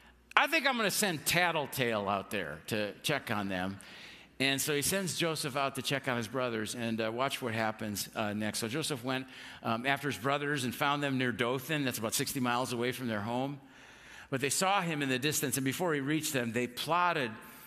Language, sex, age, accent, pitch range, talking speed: English, male, 50-69, American, 125-170 Hz, 220 wpm